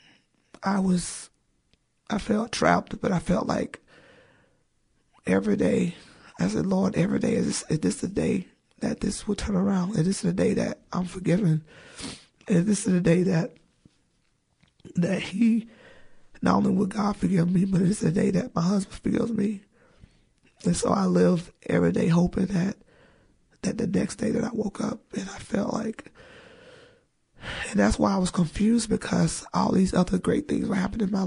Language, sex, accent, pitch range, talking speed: English, male, American, 175-215 Hz, 180 wpm